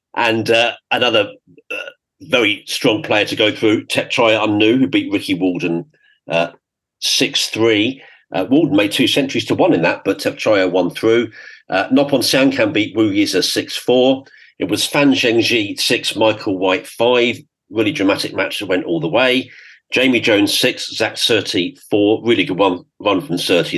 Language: English